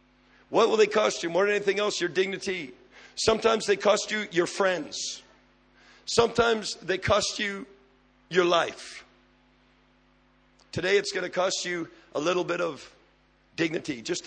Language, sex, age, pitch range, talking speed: English, male, 50-69, 170-265 Hz, 145 wpm